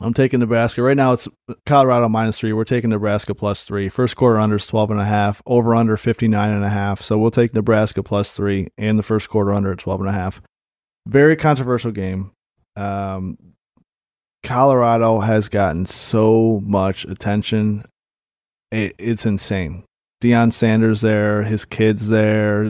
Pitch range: 105-115 Hz